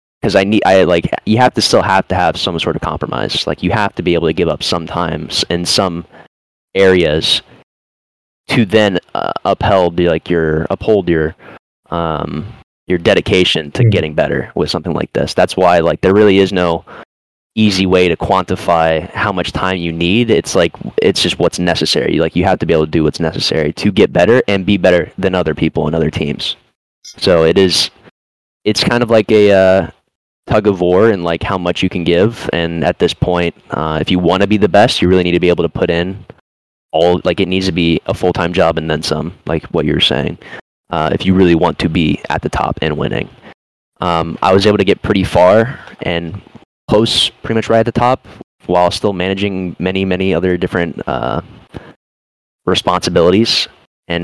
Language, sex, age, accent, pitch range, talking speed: English, male, 20-39, American, 85-95 Hz, 205 wpm